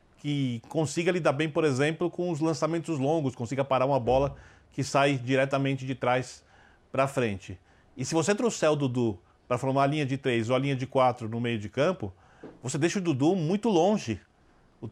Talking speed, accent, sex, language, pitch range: 195 wpm, Brazilian, male, Portuguese, 125-165 Hz